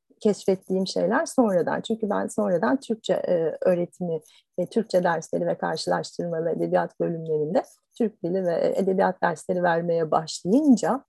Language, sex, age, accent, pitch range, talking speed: Turkish, female, 40-59, native, 180-245 Hz, 115 wpm